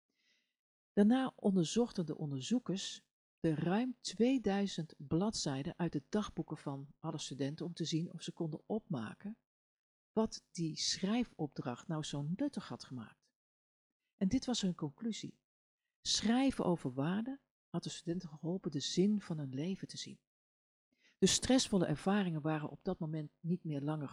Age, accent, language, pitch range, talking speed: 50-69, Dutch, Dutch, 155-205 Hz, 145 wpm